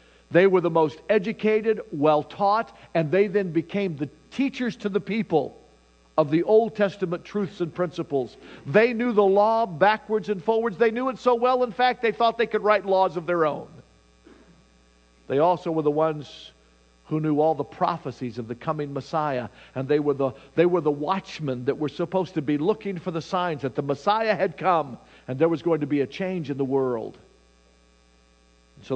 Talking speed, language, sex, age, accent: 195 wpm, English, male, 50-69, American